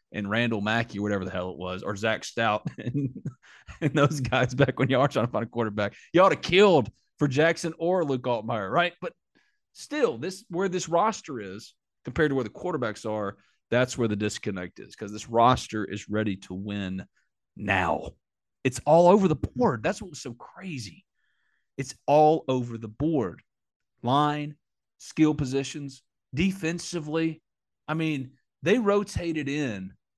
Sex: male